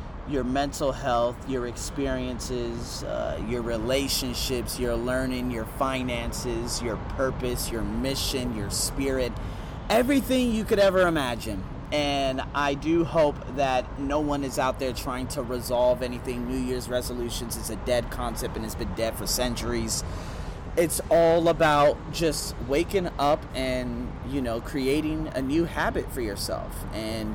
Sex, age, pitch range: male, 30-49, 115-140 Hz